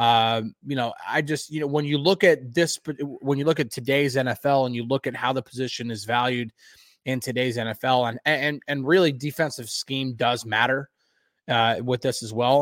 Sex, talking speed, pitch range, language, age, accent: male, 205 wpm, 125-155 Hz, English, 20-39, American